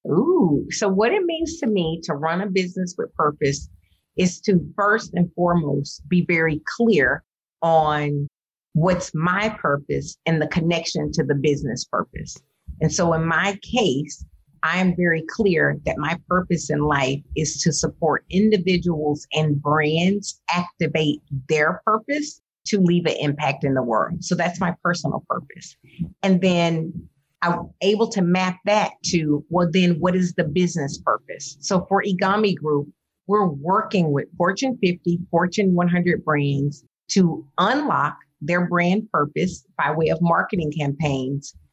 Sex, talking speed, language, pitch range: female, 150 wpm, English, 150-190 Hz